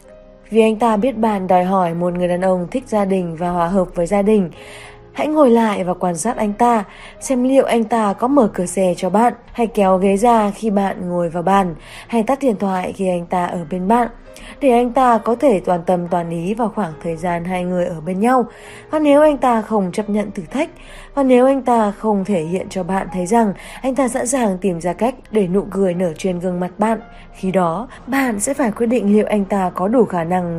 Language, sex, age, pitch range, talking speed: Vietnamese, female, 20-39, 180-235 Hz, 245 wpm